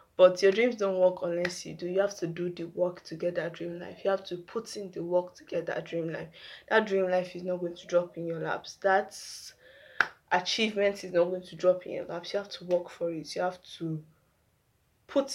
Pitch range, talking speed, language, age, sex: 175-200 Hz, 240 wpm, English, 20-39, female